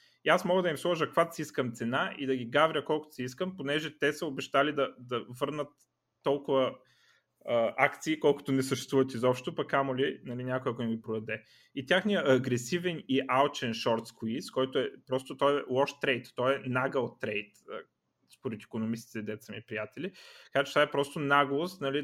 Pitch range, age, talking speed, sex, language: 120-145 Hz, 30-49, 180 wpm, male, Bulgarian